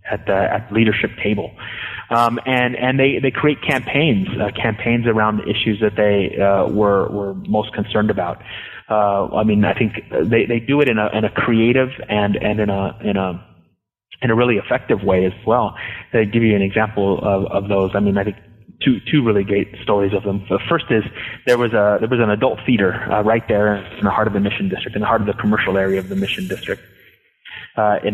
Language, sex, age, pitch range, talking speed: English, male, 30-49, 100-120 Hz, 225 wpm